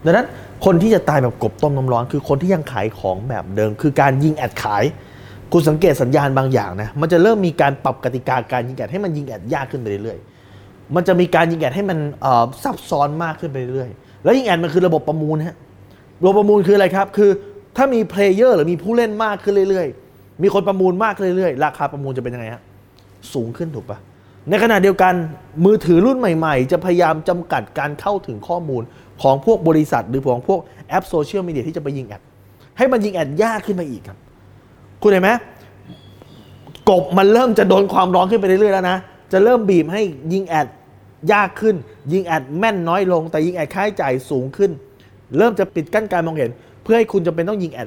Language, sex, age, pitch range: Thai, male, 20-39, 125-195 Hz